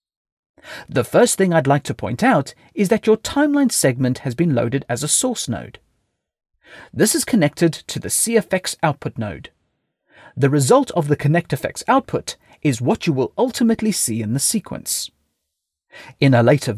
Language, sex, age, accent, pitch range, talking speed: English, male, 40-59, British, 135-215 Hz, 165 wpm